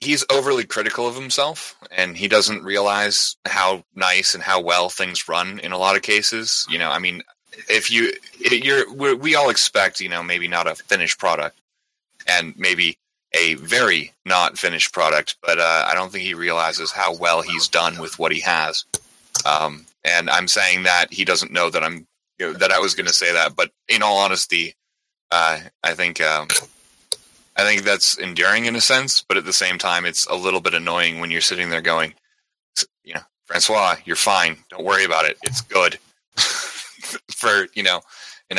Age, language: 30-49, English